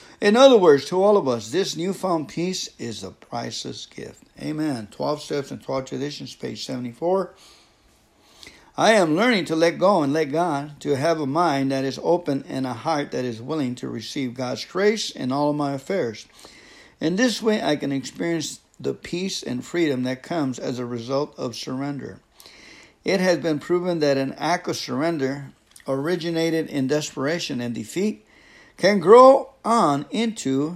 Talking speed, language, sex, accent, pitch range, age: 170 wpm, English, male, American, 125-175 Hz, 60-79